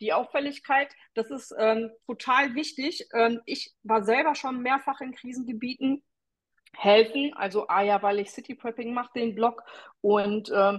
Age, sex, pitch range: 30-49, female, 215-260 Hz